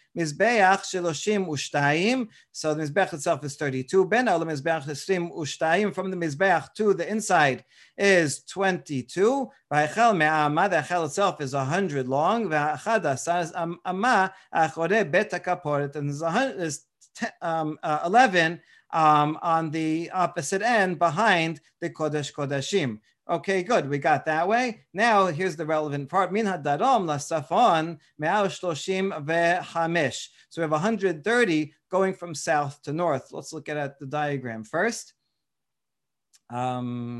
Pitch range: 150-190 Hz